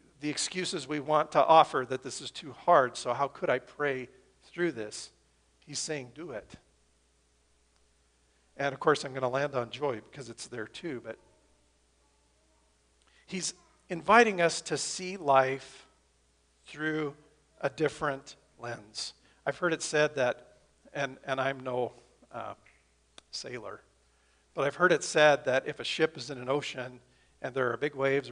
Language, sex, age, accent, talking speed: English, male, 50-69, American, 160 wpm